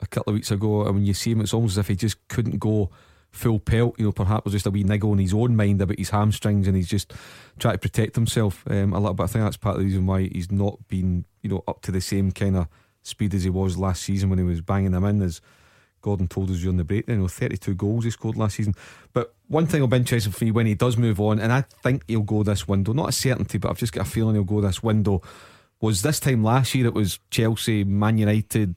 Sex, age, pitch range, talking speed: male, 30-49, 100-115 Hz, 290 wpm